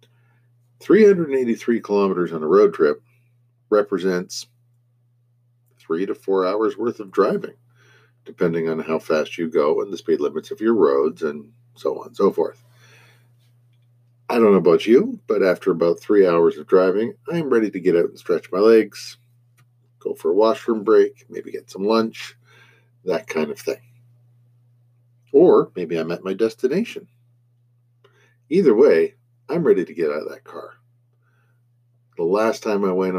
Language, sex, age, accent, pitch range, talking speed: English, male, 50-69, American, 115-135 Hz, 160 wpm